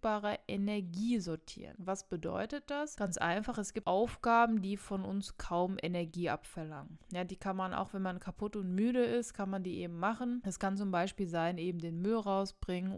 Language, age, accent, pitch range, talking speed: German, 20-39, German, 180-220 Hz, 190 wpm